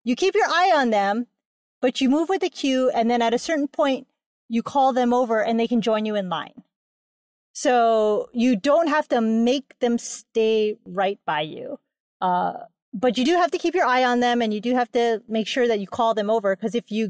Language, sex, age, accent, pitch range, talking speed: English, female, 30-49, American, 225-290 Hz, 230 wpm